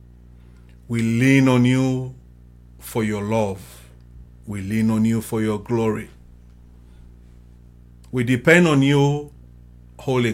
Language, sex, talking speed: English, male, 110 wpm